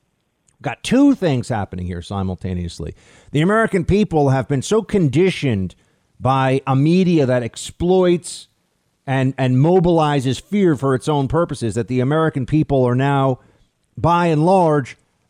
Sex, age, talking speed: male, 50-69, 135 wpm